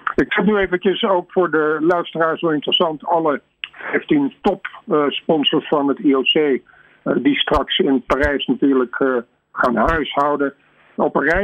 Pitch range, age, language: 135-175 Hz, 50-69, Dutch